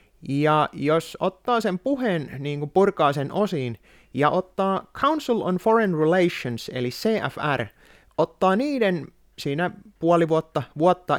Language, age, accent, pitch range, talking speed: Finnish, 30-49, native, 135-190 Hz, 130 wpm